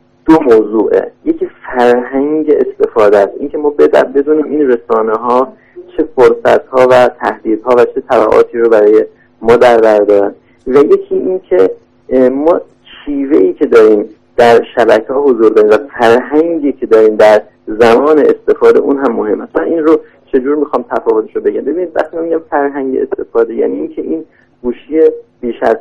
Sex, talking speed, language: male, 155 wpm, Persian